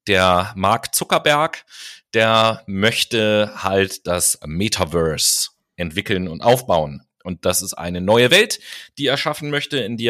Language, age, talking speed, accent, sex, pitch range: German, 30-49, 135 wpm, German, male, 100-125 Hz